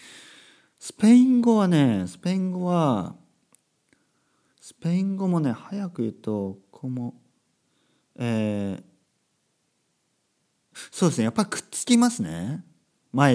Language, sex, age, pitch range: Japanese, male, 40-59, 110-155 Hz